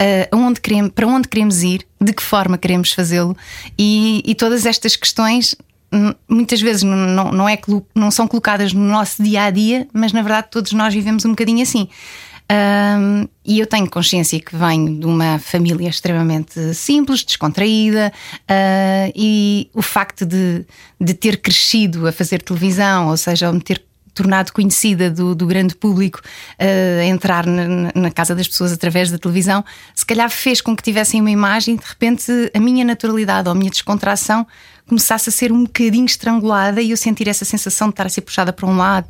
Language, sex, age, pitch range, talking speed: Portuguese, female, 20-39, 190-230 Hz, 185 wpm